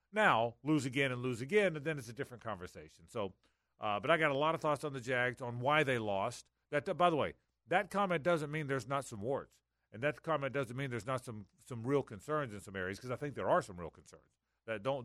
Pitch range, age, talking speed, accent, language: 115-150 Hz, 50-69, 270 wpm, American, English